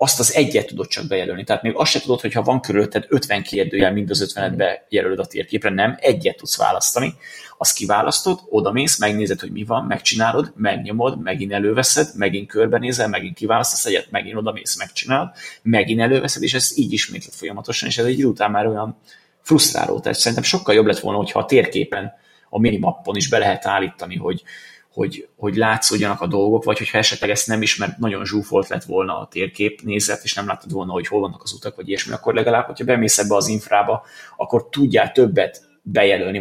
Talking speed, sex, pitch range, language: 200 wpm, male, 105-125 Hz, Hungarian